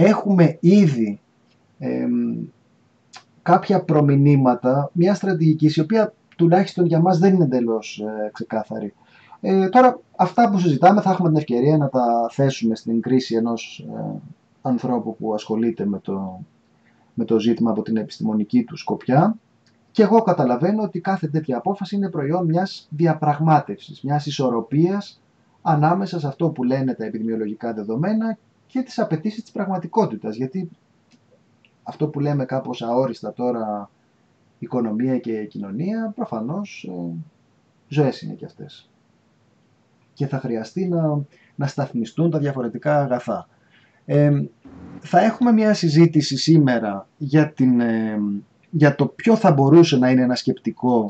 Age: 30-49